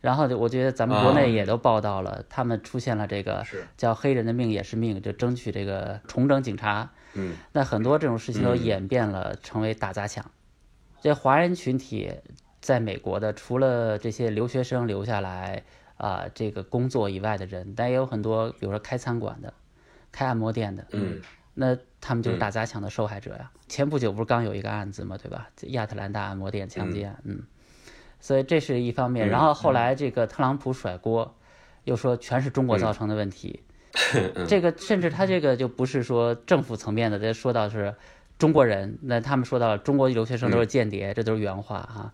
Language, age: Chinese, 20-39